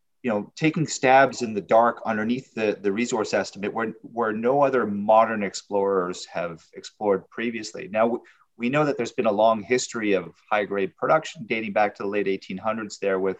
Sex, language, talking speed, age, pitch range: male, English, 190 wpm, 30-49, 100-120 Hz